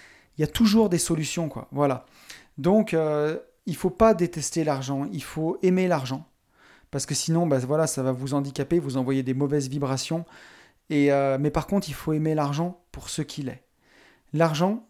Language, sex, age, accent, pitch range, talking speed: French, male, 40-59, French, 135-170 Hz, 195 wpm